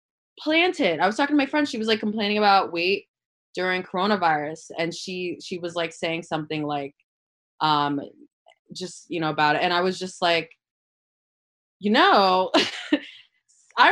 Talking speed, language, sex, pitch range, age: 160 wpm, English, female, 170-240 Hz, 20-39